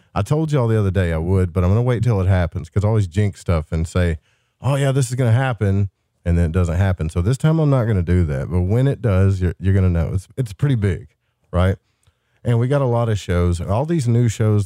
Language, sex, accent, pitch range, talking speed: English, male, American, 90-115 Hz, 285 wpm